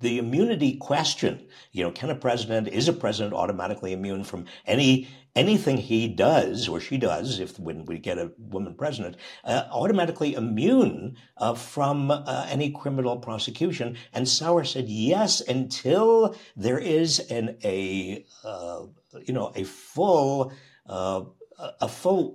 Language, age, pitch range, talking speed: English, 60-79, 115-165 Hz, 145 wpm